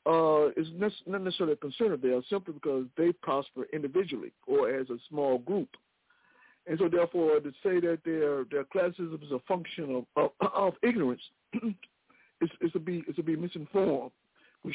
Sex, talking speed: male, 180 wpm